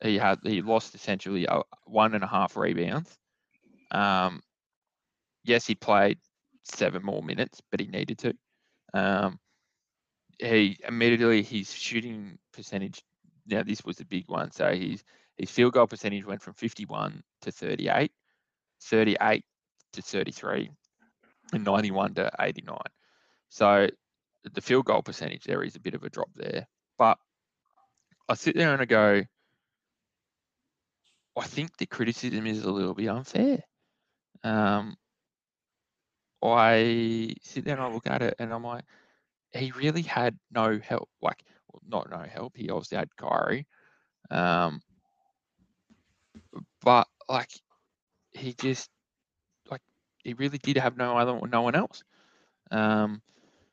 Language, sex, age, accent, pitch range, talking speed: English, male, 20-39, Australian, 105-120 Hz, 135 wpm